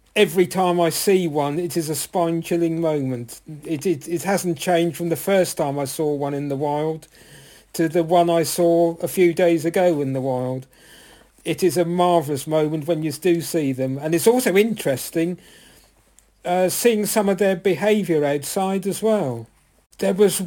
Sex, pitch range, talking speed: male, 165-210 Hz, 180 wpm